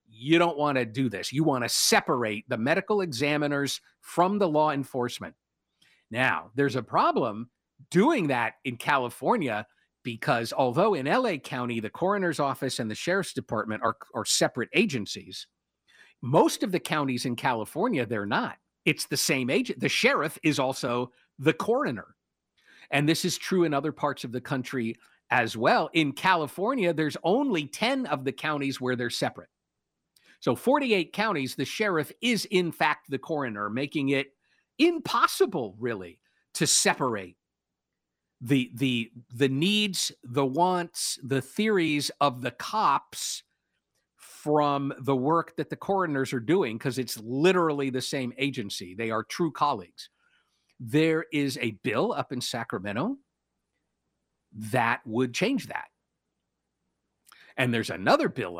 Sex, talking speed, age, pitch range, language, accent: male, 145 wpm, 50-69, 125-165 Hz, English, American